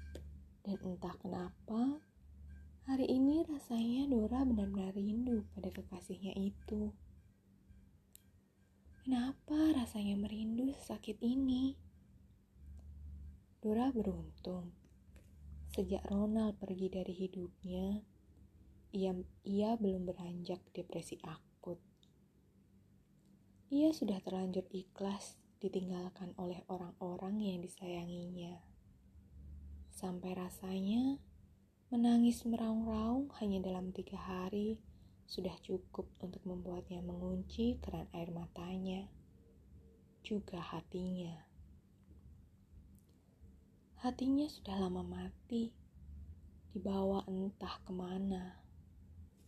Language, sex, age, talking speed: Indonesian, female, 20-39, 80 wpm